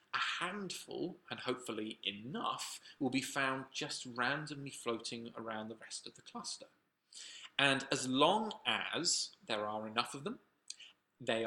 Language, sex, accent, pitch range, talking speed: English, male, British, 110-140 Hz, 140 wpm